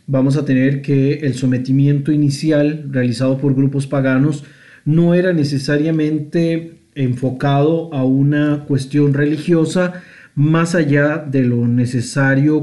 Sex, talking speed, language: male, 115 wpm, Spanish